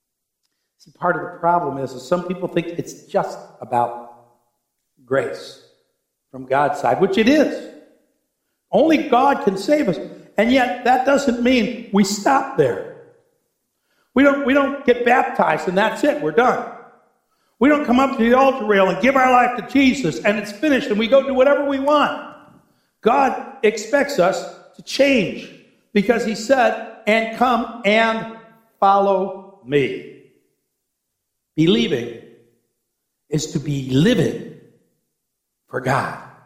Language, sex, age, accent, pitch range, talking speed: English, male, 60-79, American, 160-260 Hz, 145 wpm